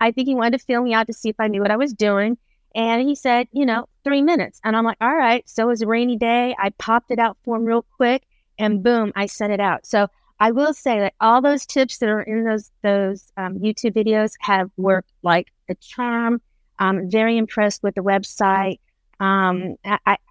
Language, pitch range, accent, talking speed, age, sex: English, 205-240 Hz, American, 230 wpm, 40-59, female